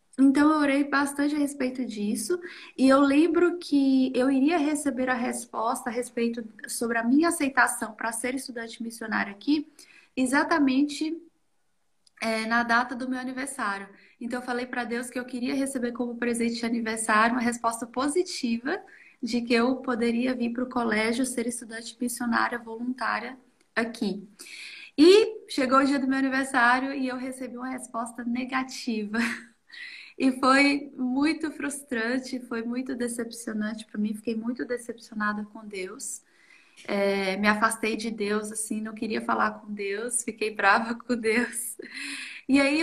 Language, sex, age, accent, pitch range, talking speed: Portuguese, female, 20-39, Brazilian, 230-280 Hz, 150 wpm